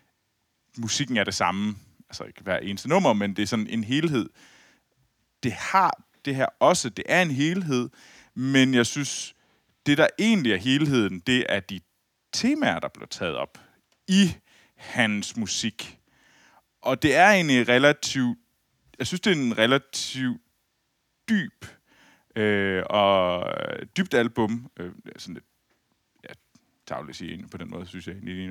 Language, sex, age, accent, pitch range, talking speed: Danish, male, 30-49, native, 105-135 Hz, 150 wpm